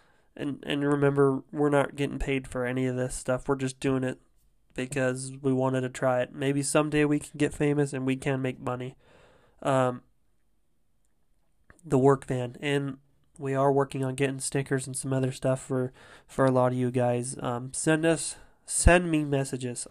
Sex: male